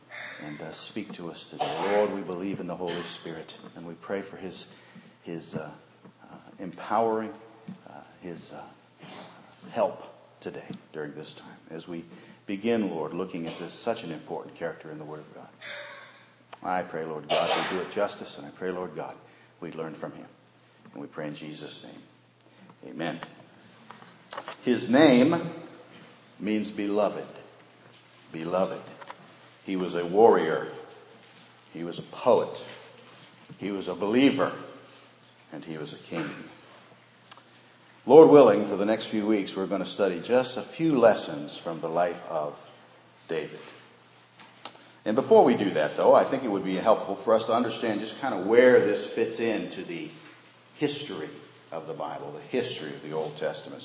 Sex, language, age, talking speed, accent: male, English, 50-69, 165 wpm, American